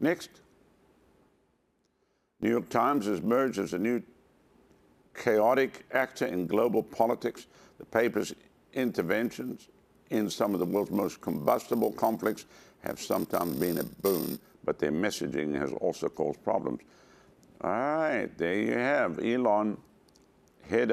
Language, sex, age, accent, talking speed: English, male, 60-79, American, 125 wpm